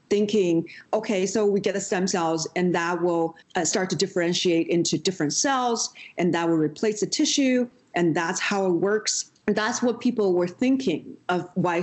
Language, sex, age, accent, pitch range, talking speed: English, female, 40-59, American, 170-235 Hz, 185 wpm